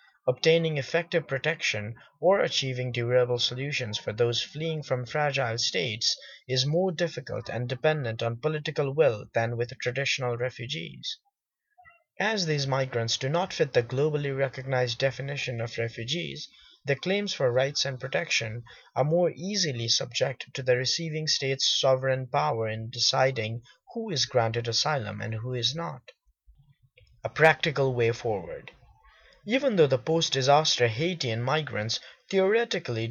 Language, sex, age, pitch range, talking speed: English, male, 30-49, 120-155 Hz, 135 wpm